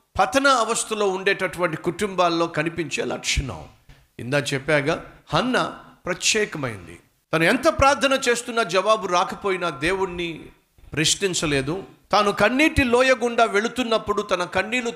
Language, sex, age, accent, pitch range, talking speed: Telugu, male, 50-69, native, 175-245 Hz, 95 wpm